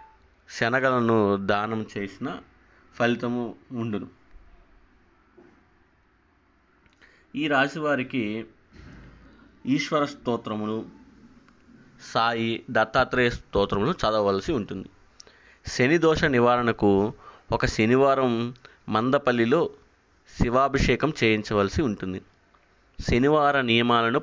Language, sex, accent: Telugu, male, native